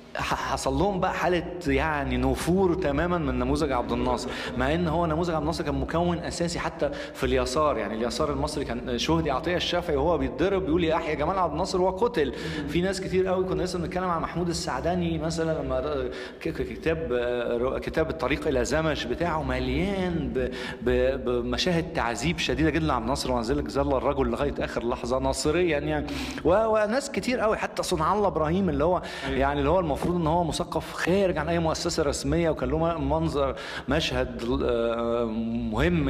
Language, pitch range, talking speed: Arabic, 125-170 Hz, 165 wpm